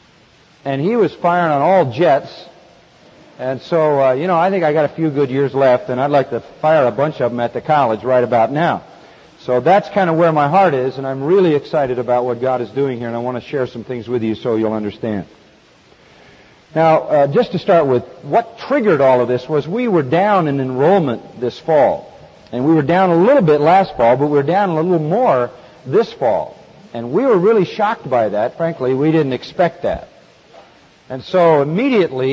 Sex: male